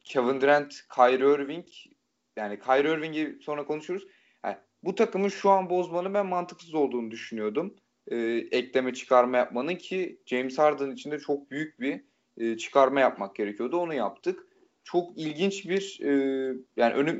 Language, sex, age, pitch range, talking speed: Turkish, male, 30-49, 125-170 Hz, 145 wpm